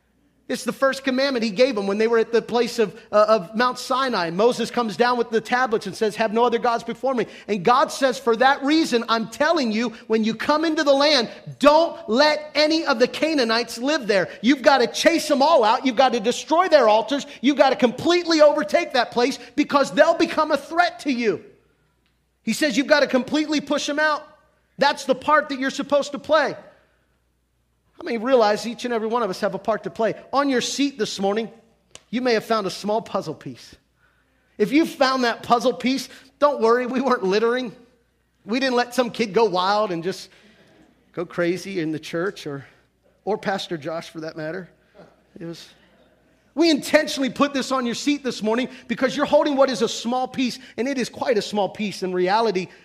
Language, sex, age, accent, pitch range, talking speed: English, male, 40-59, American, 205-275 Hz, 210 wpm